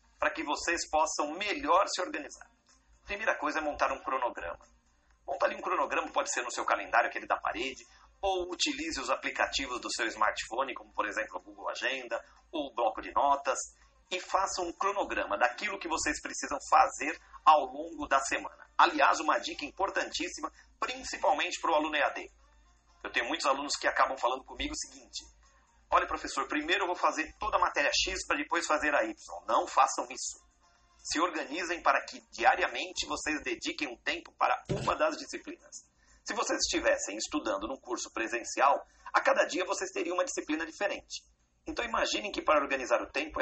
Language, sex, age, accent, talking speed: English, male, 40-59, Brazilian, 175 wpm